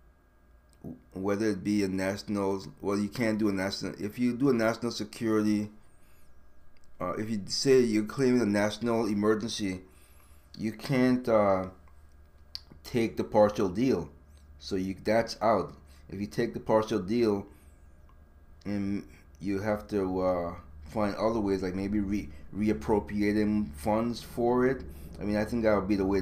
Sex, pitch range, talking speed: male, 75-110 Hz, 155 wpm